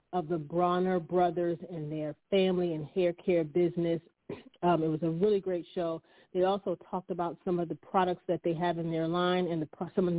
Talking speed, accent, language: 220 wpm, American, English